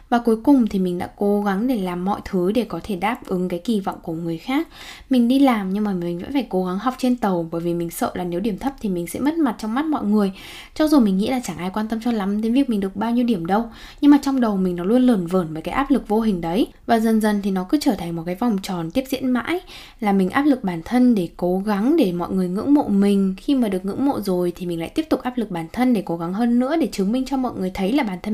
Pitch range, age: 185-260 Hz, 10-29